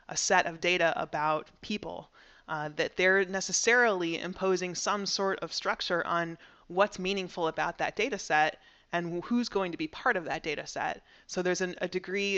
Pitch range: 165-190 Hz